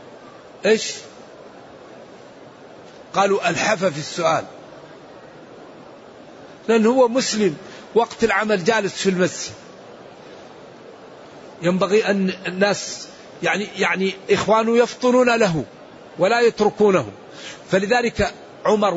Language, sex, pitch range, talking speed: Arabic, male, 180-230 Hz, 80 wpm